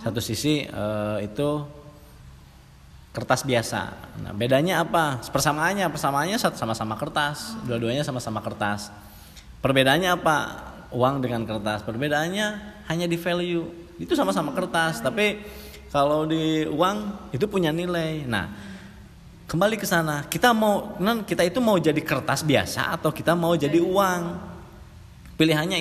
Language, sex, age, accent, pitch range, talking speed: Indonesian, male, 20-39, native, 115-160 Hz, 125 wpm